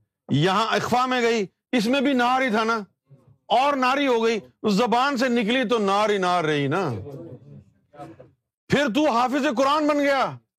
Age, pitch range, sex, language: 50-69, 170-260 Hz, male, Urdu